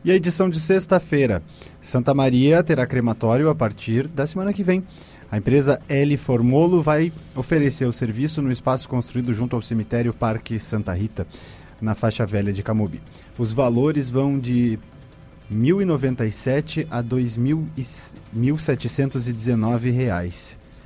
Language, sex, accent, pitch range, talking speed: Portuguese, male, Brazilian, 110-140 Hz, 130 wpm